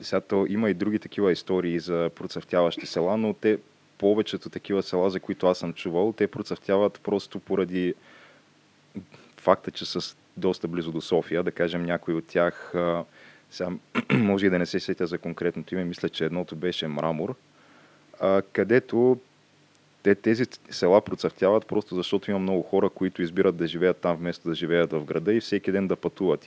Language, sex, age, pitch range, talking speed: Bulgarian, male, 20-39, 85-95 Hz, 165 wpm